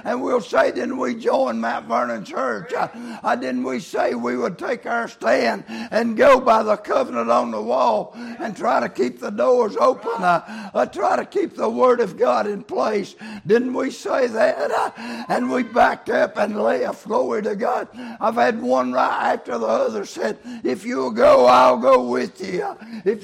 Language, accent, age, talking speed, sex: English, American, 60-79, 195 wpm, male